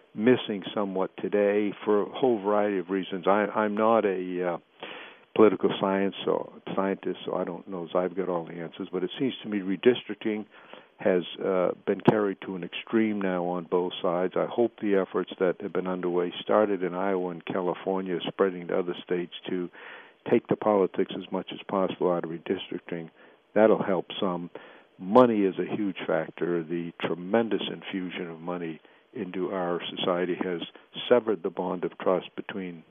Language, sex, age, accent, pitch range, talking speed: English, male, 60-79, American, 90-100 Hz, 175 wpm